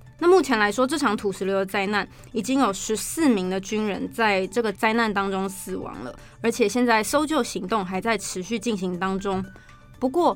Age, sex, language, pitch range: 20-39, female, Chinese, 200-255 Hz